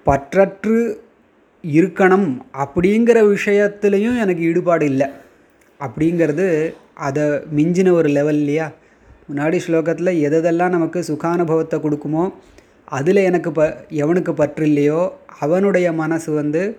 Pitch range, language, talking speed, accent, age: 140-175 Hz, Tamil, 95 wpm, native, 20-39